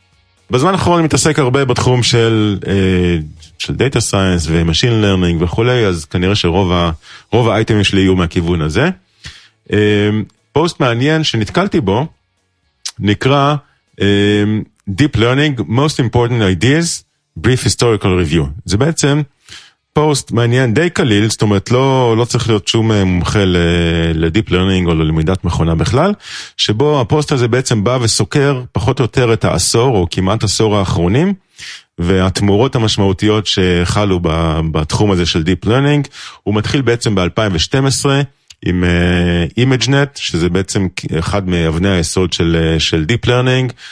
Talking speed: 125 wpm